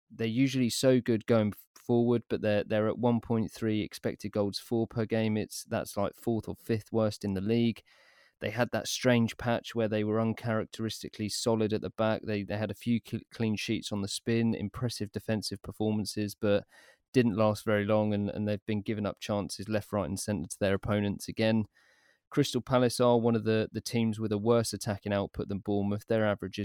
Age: 20-39